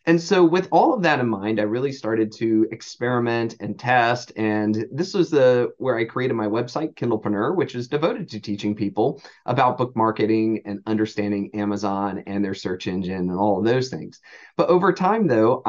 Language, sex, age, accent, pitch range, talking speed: English, male, 30-49, American, 105-130 Hz, 185 wpm